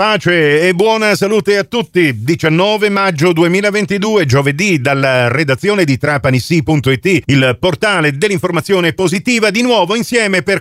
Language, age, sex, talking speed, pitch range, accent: Italian, 50-69, male, 125 wpm, 135-190 Hz, native